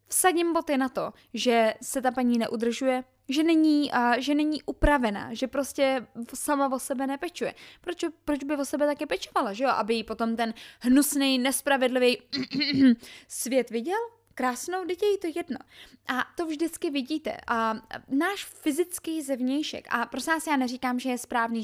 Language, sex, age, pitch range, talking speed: Czech, female, 10-29, 235-315 Hz, 160 wpm